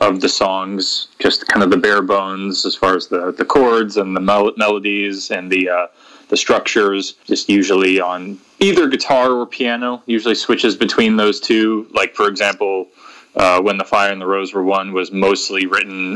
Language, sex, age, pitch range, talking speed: English, male, 20-39, 95-105 Hz, 190 wpm